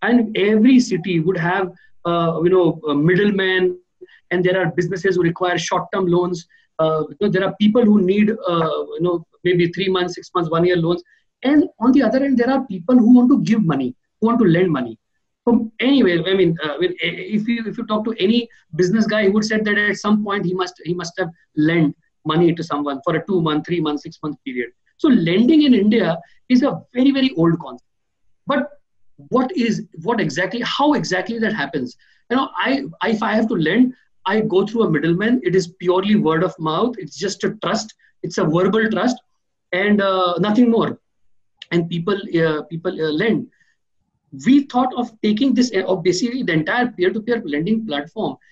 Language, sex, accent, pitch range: English, male, Indian, 170-230 Hz